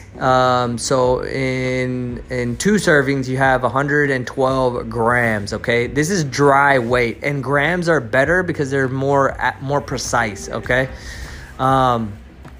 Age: 20-39